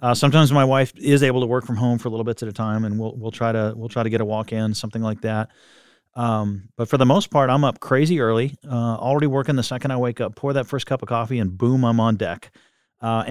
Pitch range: 110-130 Hz